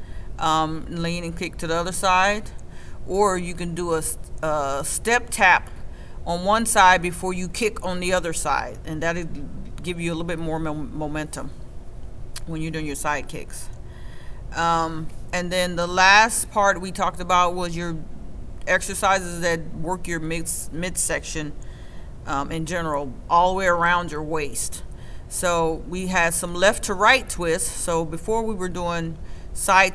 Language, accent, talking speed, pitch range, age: English, American, 160 wpm, 160-185 Hz, 40-59